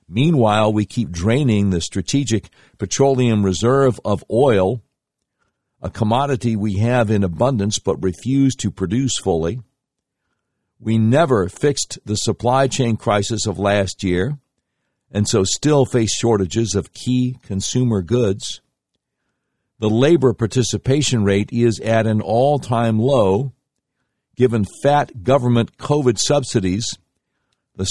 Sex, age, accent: male, 50-69, American